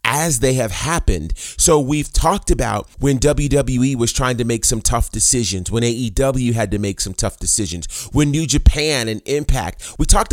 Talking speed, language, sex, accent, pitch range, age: 185 wpm, English, male, American, 105-140 Hz, 30-49